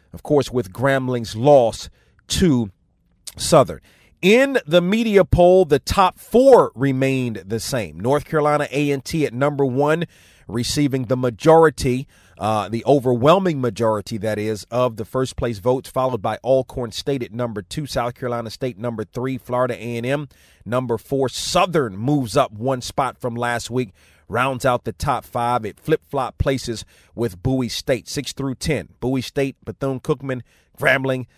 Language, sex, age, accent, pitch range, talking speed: English, male, 40-59, American, 115-140 Hz, 155 wpm